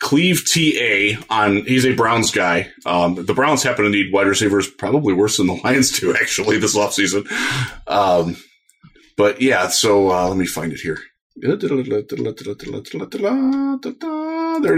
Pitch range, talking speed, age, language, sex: 115-175 Hz, 150 wpm, 30-49, English, male